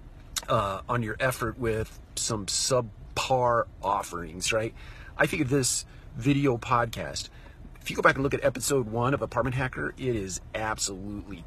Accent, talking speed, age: American, 155 wpm, 40-59